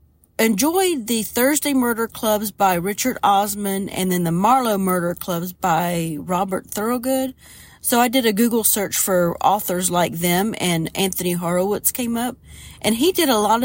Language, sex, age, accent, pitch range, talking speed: English, female, 40-59, American, 175-230 Hz, 165 wpm